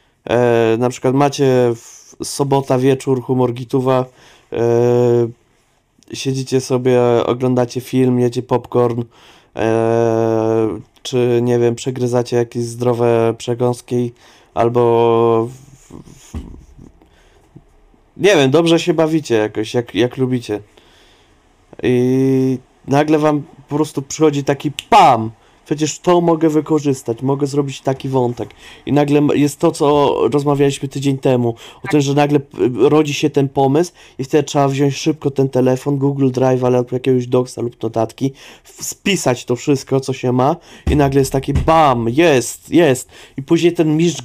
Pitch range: 125-155 Hz